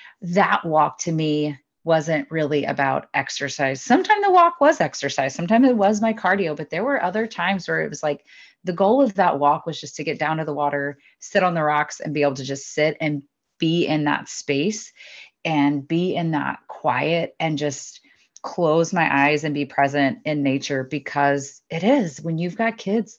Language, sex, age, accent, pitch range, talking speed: English, female, 30-49, American, 145-180 Hz, 200 wpm